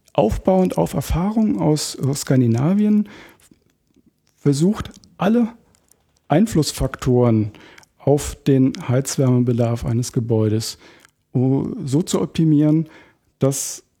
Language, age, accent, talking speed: German, 50-69, German, 75 wpm